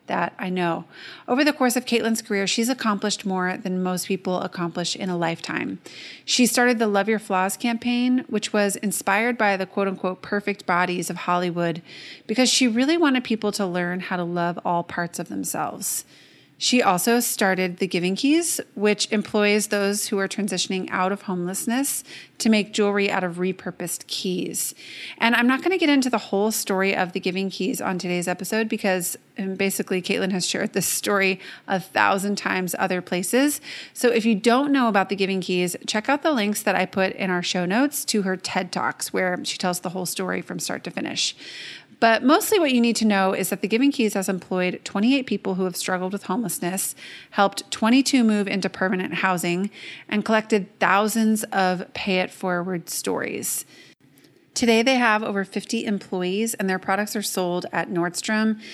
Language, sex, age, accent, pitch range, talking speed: English, female, 30-49, American, 185-225 Hz, 185 wpm